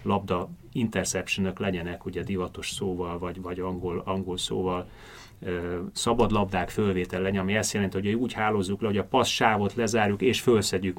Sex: male